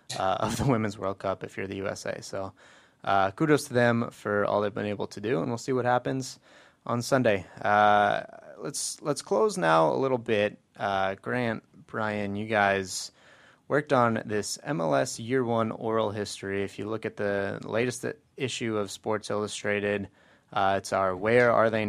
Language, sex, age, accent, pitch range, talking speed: English, male, 20-39, American, 95-115 Hz, 180 wpm